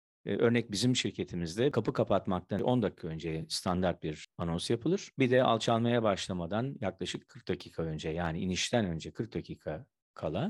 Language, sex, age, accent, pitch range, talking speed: Turkish, male, 50-69, native, 90-130 Hz, 150 wpm